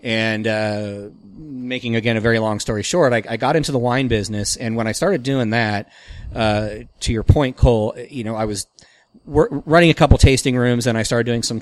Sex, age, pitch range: male, 30-49, 105-120 Hz